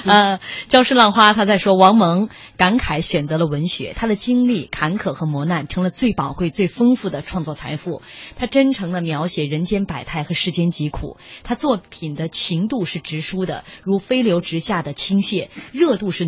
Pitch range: 165-235 Hz